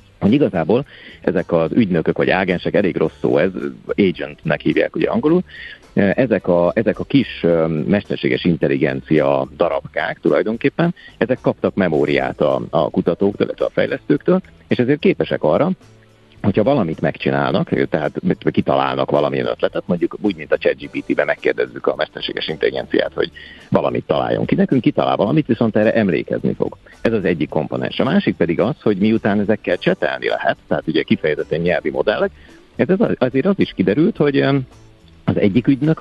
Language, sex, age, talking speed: Hungarian, male, 50-69, 155 wpm